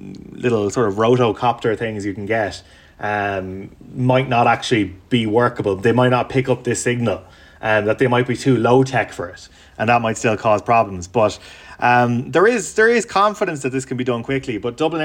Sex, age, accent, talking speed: male, 20-39, Irish, 210 wpm